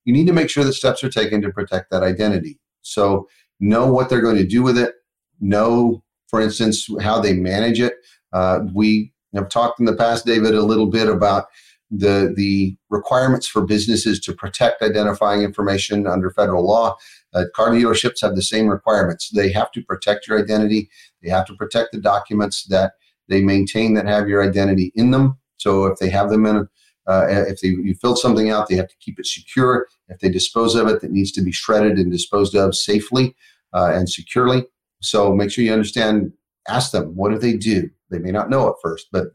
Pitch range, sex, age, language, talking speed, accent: 100-115 Hz, male, 40-59, English, 205 wpm, American